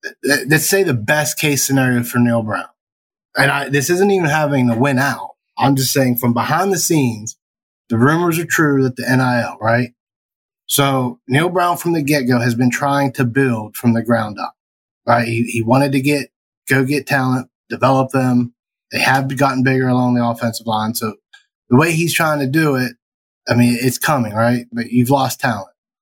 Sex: male